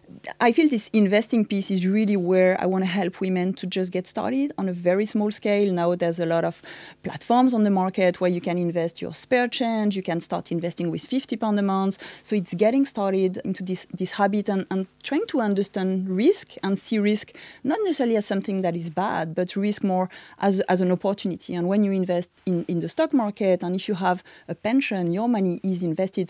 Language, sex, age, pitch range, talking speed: English, female, 30-49, 175-210 Hz, 220 wpm